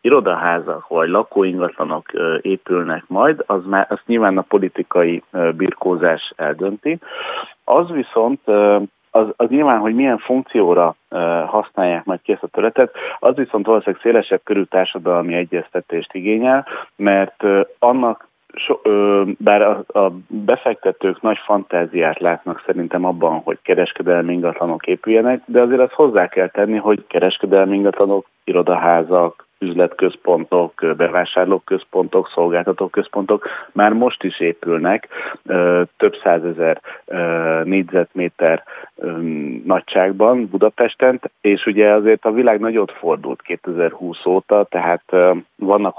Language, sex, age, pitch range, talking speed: Hungarian, male, 40-59, 90-110 Hz, 110 wpm